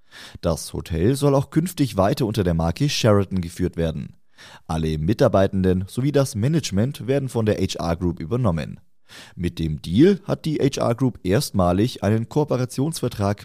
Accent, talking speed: German, 145 wpm